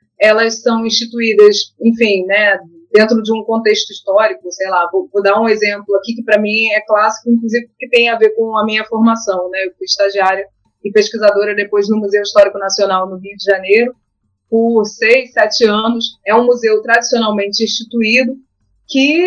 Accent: Brazilian